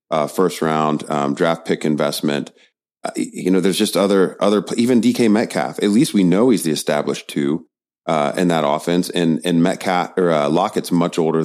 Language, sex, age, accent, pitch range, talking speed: English, male, 30-49, American, 80-95 Hz, 195 wpm